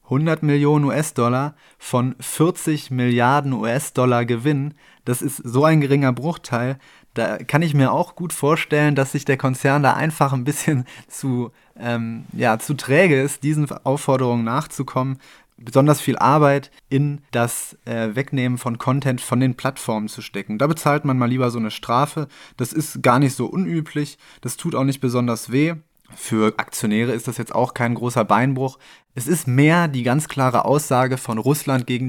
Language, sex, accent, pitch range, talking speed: German, male, German, 125-150 Hz, 165 wpm